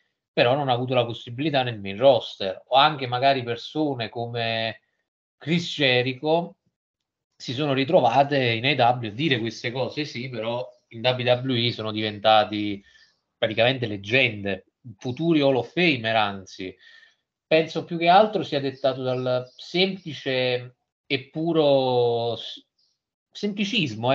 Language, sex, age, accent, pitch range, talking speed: Italian, male, 30-49, native, 120-150 Hz, 120 wpm